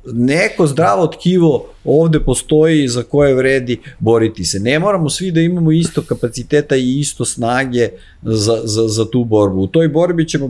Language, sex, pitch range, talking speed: English, male, 105-140 Hz, 165 wpm